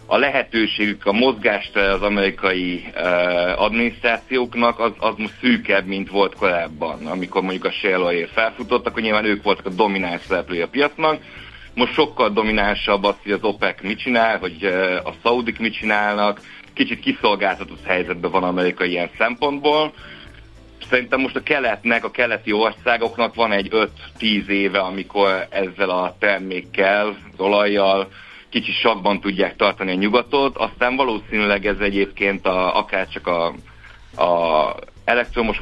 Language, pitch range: Hungarian, 95-115 Hz